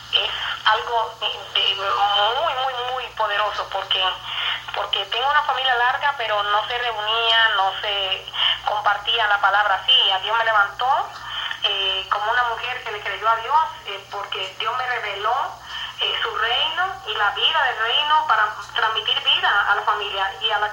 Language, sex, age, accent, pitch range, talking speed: English, female, 30-49, American, 215-295 Hz, 170 wpm